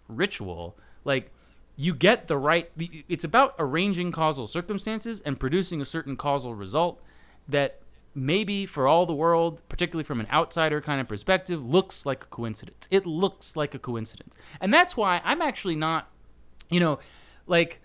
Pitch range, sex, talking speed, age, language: 105-170 Hz, male, 160 wpm, 30-49, English